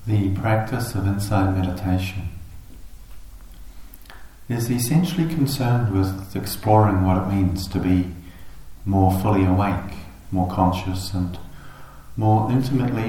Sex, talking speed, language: male, 105 wpm, English